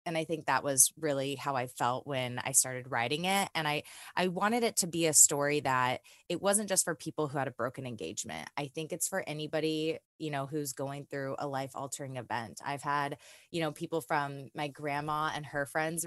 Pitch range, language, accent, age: 135-165 Hz, English, American, 20-39